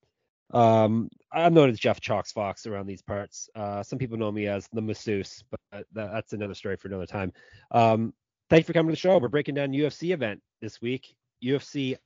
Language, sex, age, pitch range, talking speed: English, male, 30-49, 105-125 Hz, 205 wpm